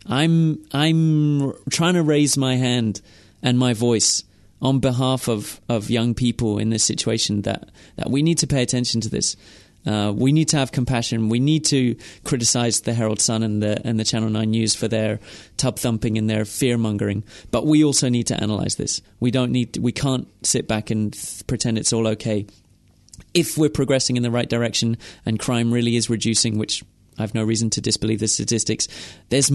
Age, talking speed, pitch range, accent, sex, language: 30-49, 200 wpm, 110-130 Hz, British, male, English